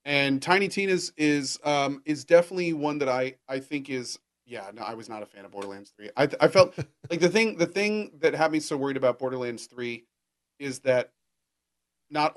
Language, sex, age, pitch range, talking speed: English, male, 40-59, 120-155 Hz, 215 wpm